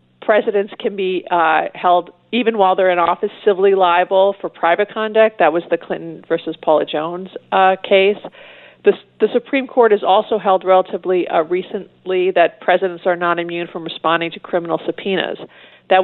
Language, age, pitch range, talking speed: English, 40-59, 165-210 Hz, 170 wpm